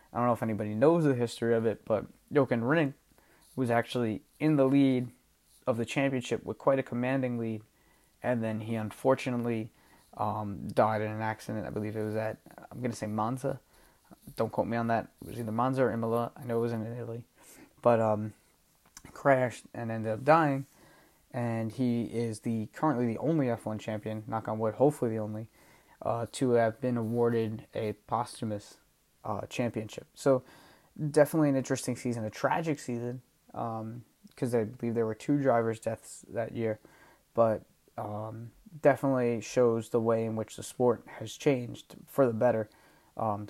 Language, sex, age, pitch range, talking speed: English, male, 20-39, 110-135 Hz, 175 wpm